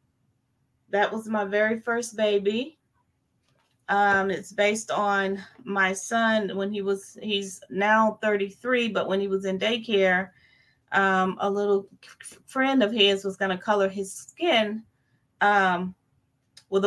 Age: 30-49